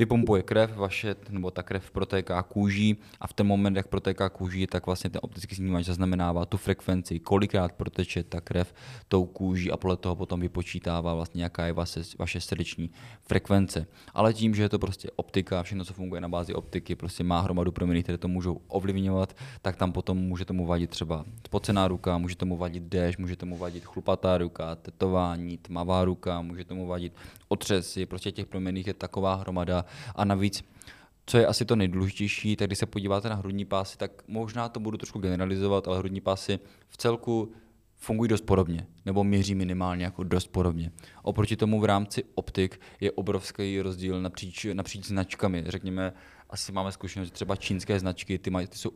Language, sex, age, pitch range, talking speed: Czech, male, 20-39, 90-105 Hz, 180 wpm